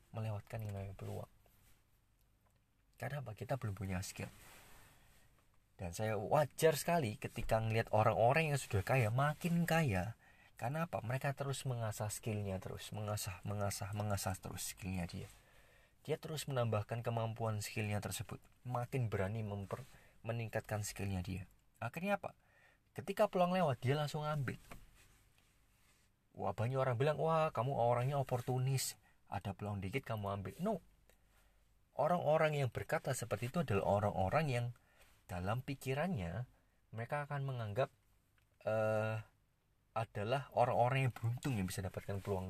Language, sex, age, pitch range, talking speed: Indonesian, male, 30-49, 100-130 Hz, 125 wpm